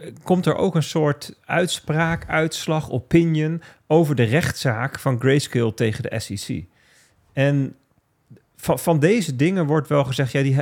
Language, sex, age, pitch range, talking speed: Dutch, male, 40-59, 115-155 Hz, 145 wpm